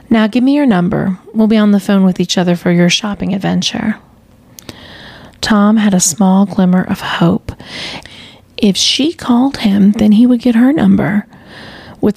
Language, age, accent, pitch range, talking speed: English, 30-49, American, 185-230 Hz, 175 wpm